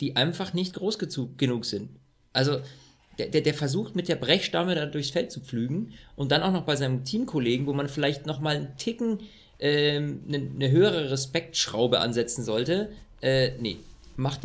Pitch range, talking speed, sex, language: 130-165 Hz, 175 wpm, male, German